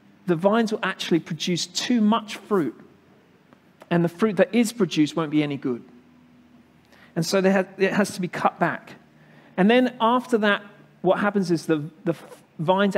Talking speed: 180 wpm